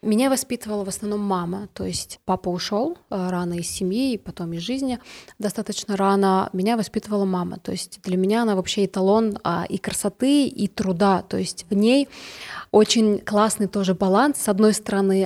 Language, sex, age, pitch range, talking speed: Russian, female, 20-39, 190-220 Hz, 165 wpm